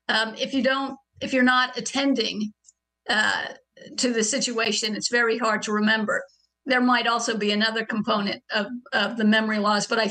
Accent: American